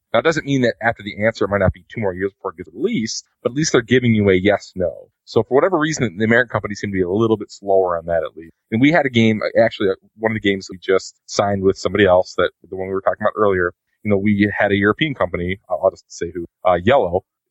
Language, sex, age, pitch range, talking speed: English, male, 30-49, 95-110 Hz, 290 wpm